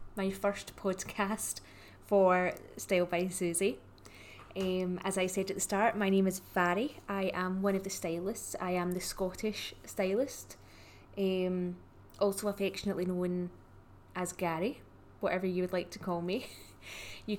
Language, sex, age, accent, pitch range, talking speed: English, female, 20-39, British, 170-205 Hz, 150 wpm